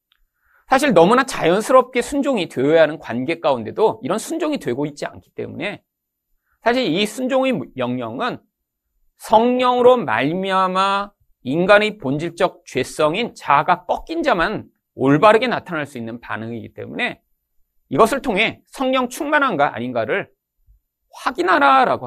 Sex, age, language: male, 40-59, Korean